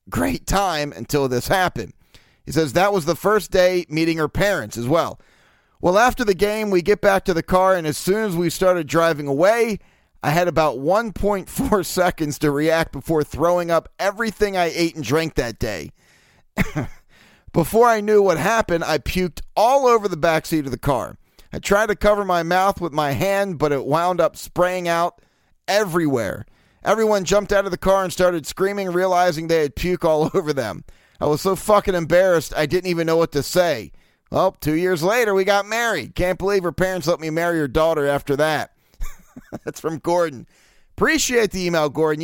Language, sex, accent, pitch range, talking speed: English, male, American, 155-195 Hz, 190 wpm